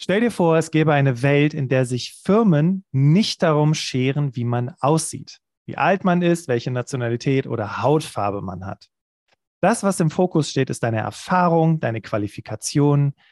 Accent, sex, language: German, male, German